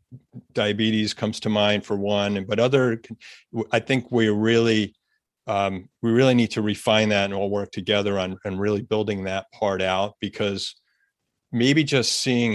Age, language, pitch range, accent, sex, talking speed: 40-59, English, 100-115 Hz, American, male, 165 wpm